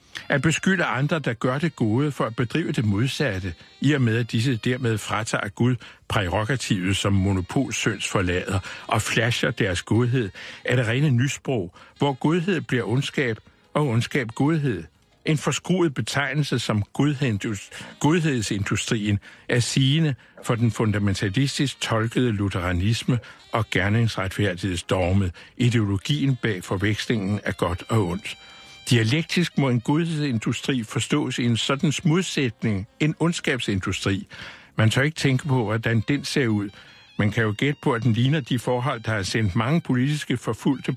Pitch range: 105-145 Hz